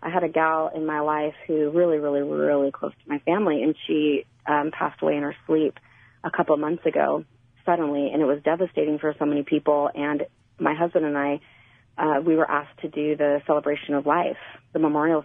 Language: English